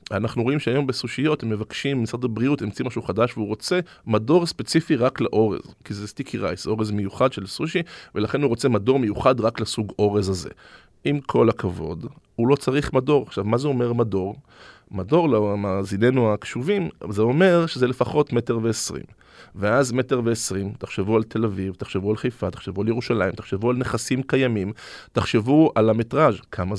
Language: Hebrew